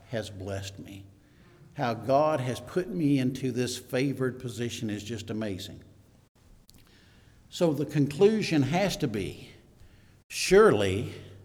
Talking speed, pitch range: 115 wpm, 105-145 Hz